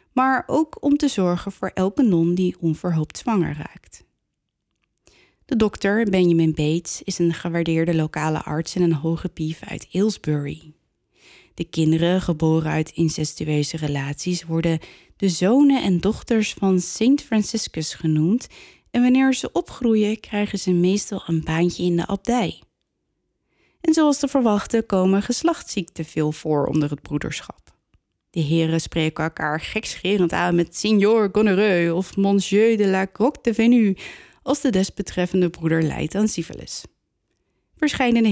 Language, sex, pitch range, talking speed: Dutch, female, 165-220 Hz, 140 wpm